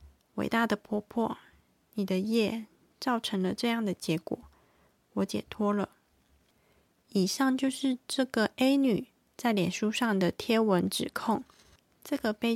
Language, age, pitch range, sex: Chinese, 20-39, 195-240 Hz, female